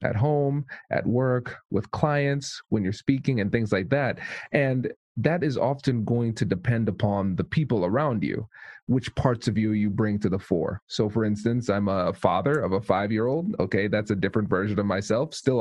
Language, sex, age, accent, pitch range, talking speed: English, male, 30-49, American, 105-125 Hz, 195 wpm